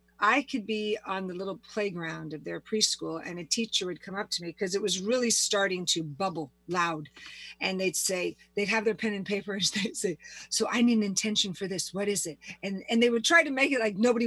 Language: English